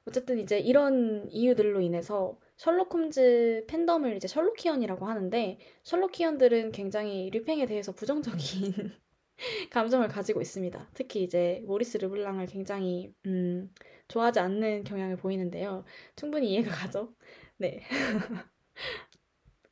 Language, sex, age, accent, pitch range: Korean, female, 20-39, native, 205-285 Hz